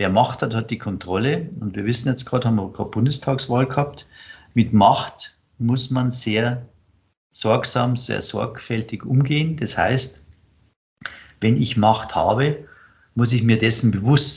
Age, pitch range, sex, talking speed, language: 50-69, 100-125 Hz, male, 150 wpm, German